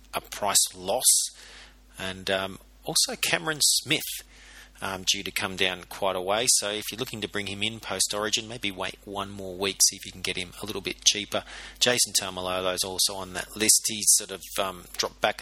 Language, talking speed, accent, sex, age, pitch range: English, 205 wpm, Australian, male, 40-59, 95-110 Hz